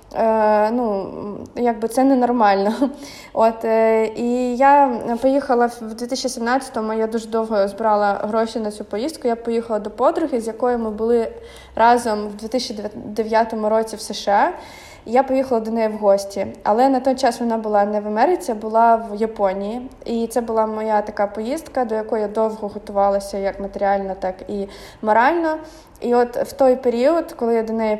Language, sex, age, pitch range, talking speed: Ukrainian, female, 20-39, 210-240 Hz, 165 wpm